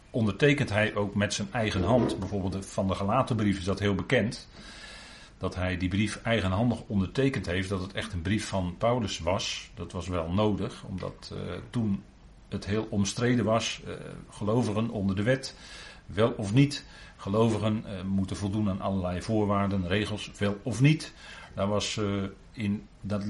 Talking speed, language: 160 wpm, Dutch